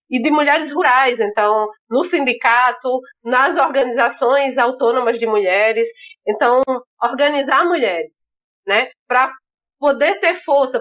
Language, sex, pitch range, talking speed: Portuguese, female, 235-305 Hz, 110 wpm